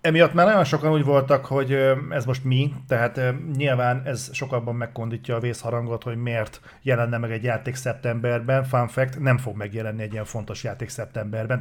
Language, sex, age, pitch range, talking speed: Hungarian, male, 40-59, 115-135 Hz, 175 wpm